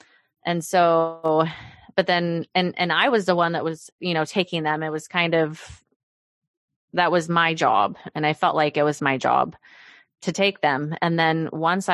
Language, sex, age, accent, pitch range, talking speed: English, female, 20-39, American, 155-190 Hz, 190 wpm